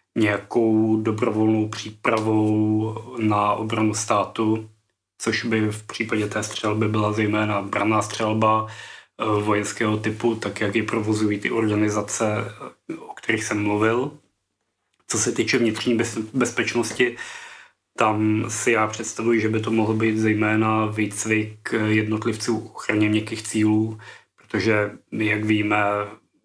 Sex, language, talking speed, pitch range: male, Czech, 120 wpm, 110-115 Hz